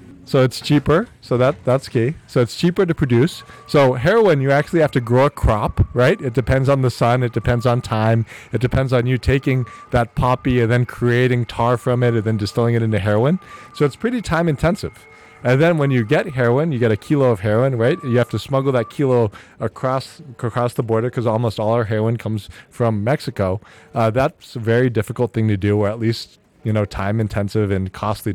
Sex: male